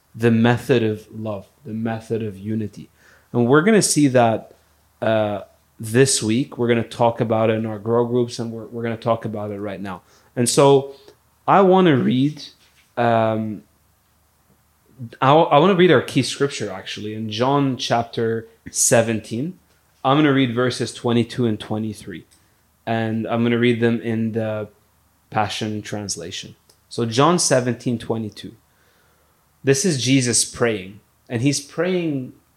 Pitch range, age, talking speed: 105-125 Hz, 30-49, 160 wpm